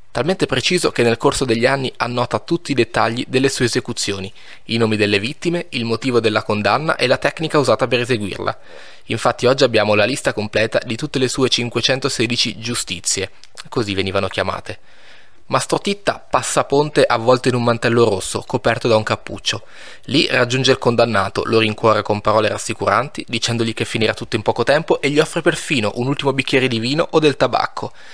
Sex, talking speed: male, 180 wpm